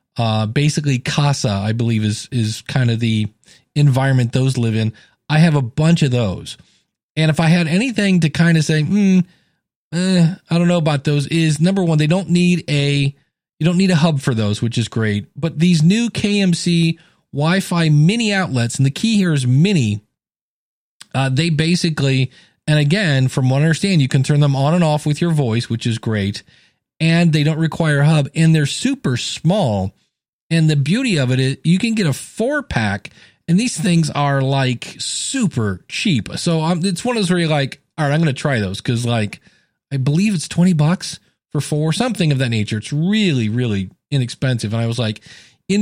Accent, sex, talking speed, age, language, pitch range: American, male, 200 wpm, 40-59, English, 130-170 Hz